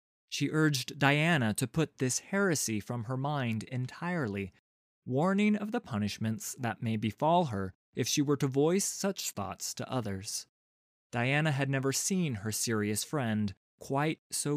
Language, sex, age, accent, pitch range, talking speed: English, male, 30-49, American, 105-155 Hz, 150 wpm